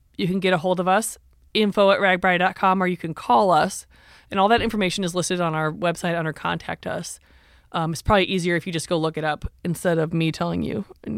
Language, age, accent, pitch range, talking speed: English, 20-39, American, 170-210 Hz, 235 wpm